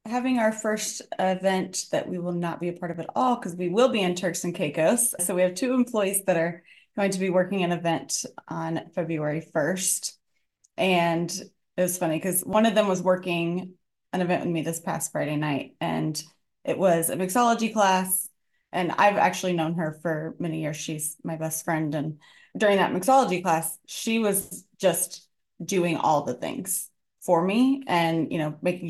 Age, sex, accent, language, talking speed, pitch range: 20-39, female, American, English, 190 wpm, 165-200 Hz